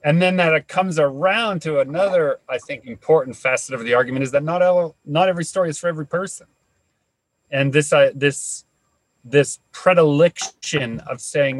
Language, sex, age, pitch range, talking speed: English, male, 30-49, 130-165 Hz, 175 wpm